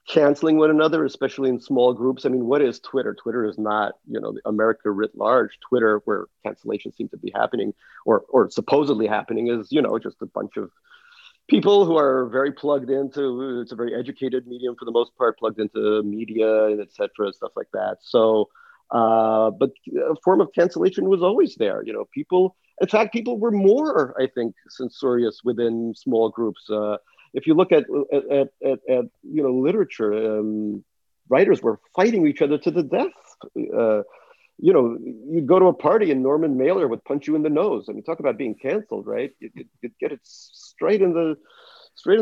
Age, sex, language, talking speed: 40-59, male, English, 195 wpm